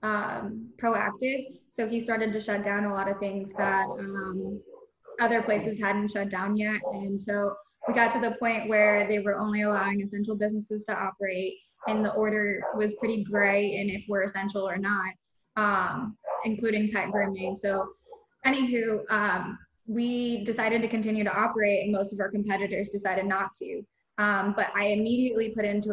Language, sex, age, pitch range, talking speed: English, female, 20-39, 200-220 Hz, 175 wpm